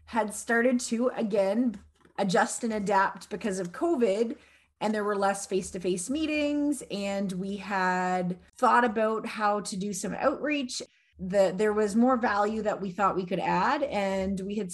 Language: English